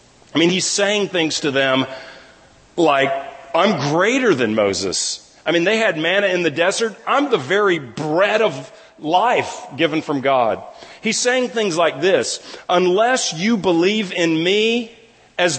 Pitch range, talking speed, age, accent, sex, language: 180-240 Hz, 155 wpm, 40-59, American, male, English